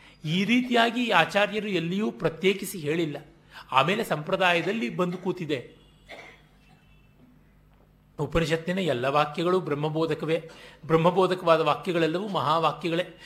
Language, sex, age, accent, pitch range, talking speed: Kannada, male, 30-49, native, 145-185 Hz, 75 wpm